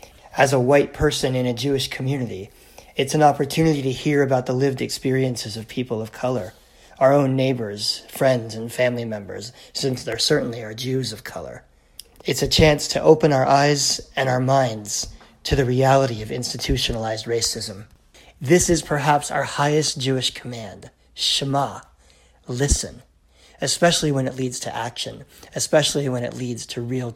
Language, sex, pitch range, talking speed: English, male, 125-155 Hz, 160 wpm